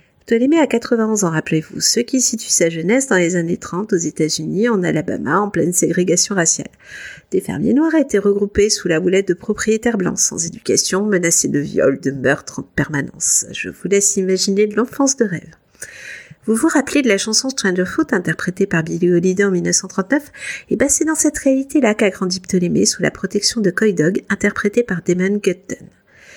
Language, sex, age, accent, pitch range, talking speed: French, female, 50-69, French, 195-265 Hz, 190 wpm